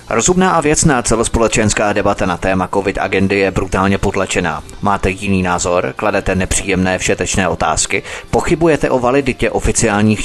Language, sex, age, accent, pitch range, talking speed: Czech, male, 30-49, native, 95-120 Hz, 130 wpm